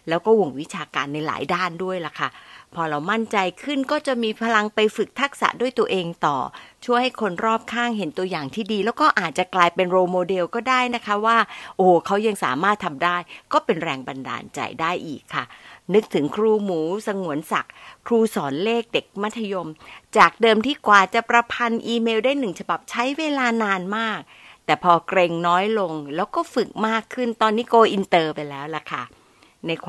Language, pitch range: Thai, 175-235 Hz